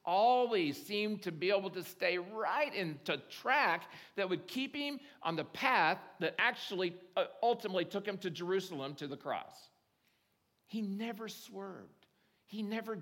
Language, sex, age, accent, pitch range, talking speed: English, male, 50-69, American, 135-195 Hz, 145 wpm